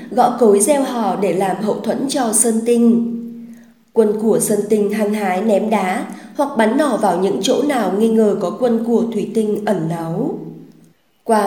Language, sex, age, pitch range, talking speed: Vietnamese, female, 20-39, 205-235 Hz, 190 wpm